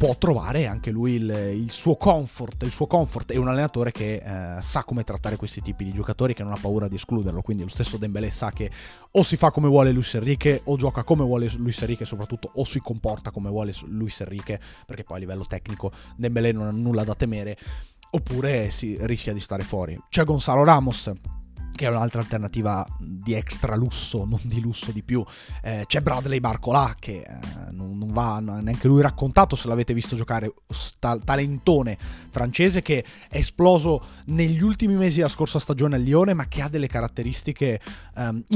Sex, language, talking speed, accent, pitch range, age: male, Italian, 190 wpm, native, 105-135 Hz, 30-49